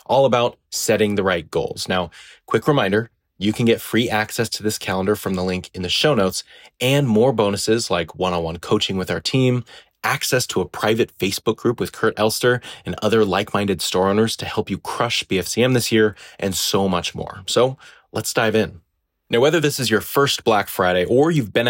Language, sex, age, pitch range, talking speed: English, male, 20-39, 95-120 Hz, 200 wpm